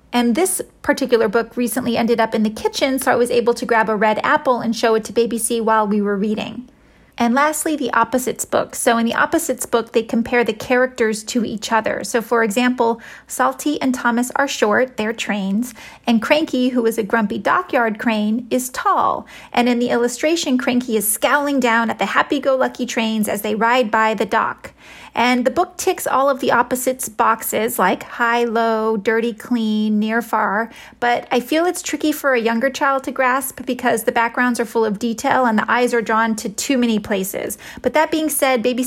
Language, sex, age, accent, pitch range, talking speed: English, female, 30-49, American, 225-260 Hz, 205 wpm